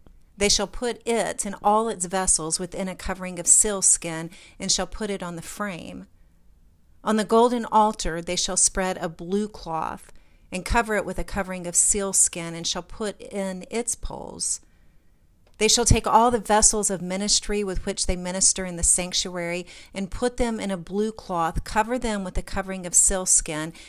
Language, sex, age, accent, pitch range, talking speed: English, female, 40-59, American, 165-200 Hz, 185 wpm